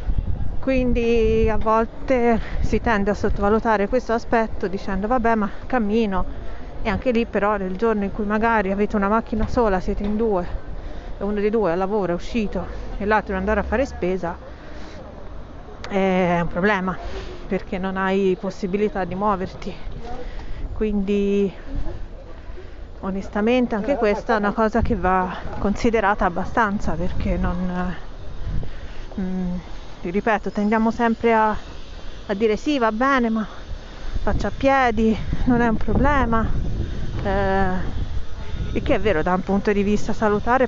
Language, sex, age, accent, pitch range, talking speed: Italian, female, 30-49, native, 185-225 Hz, 140 wpm